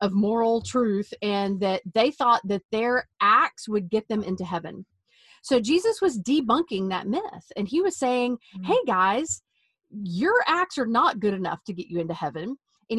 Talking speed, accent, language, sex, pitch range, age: 180 wpm, American, English, female, 185-255 Hz, 40-59